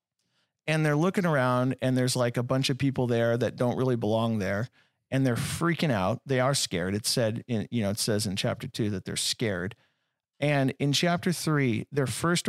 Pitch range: 110-140 Hz